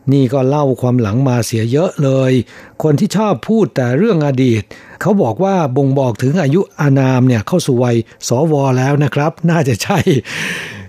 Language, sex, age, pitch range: Thai, male, 60-79, 115-140 Hz